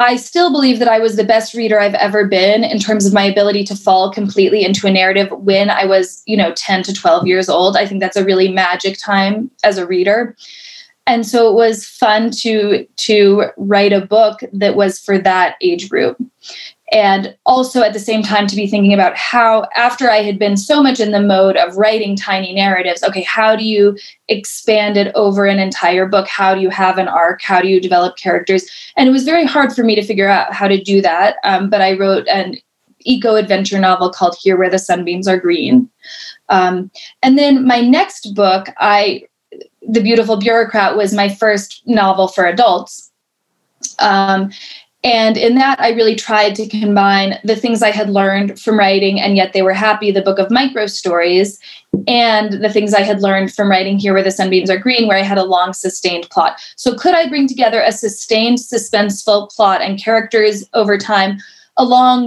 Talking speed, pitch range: 200 wpm, 195-230 Hz